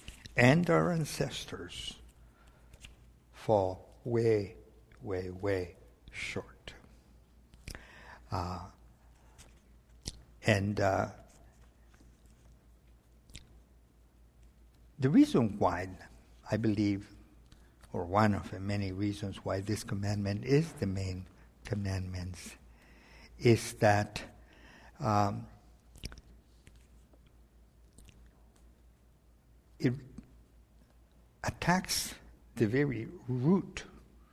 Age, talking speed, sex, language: 60-79, 65 wpm, male, English